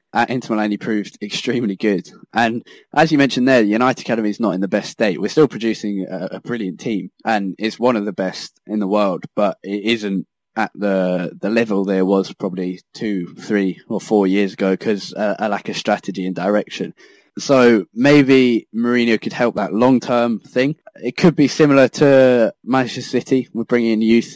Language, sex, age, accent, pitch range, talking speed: English, male, 10-29, British, 100-115 Hz, 190 wpm